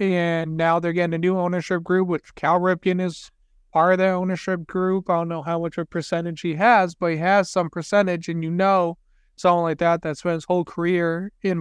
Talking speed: 225 wpm